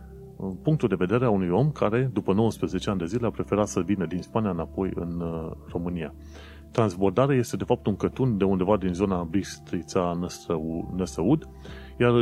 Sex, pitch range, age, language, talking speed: male, 85-105 Hz, 30-49, Romanian, 165 wpm